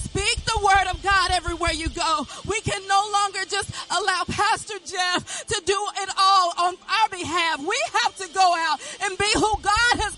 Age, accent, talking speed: 40-59, American, 195 wpm